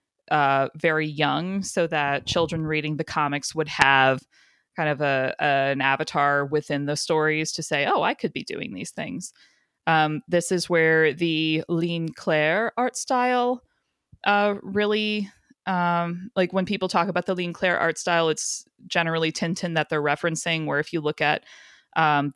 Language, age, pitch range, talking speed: English, 20-39, 150-185 Hz, 170 wpm